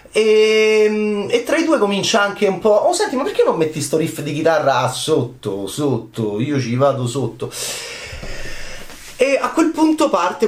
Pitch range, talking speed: 125-190 Hz, 170 wpm